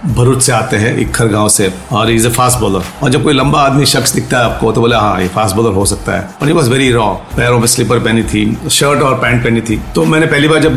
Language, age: Hindi, 40-59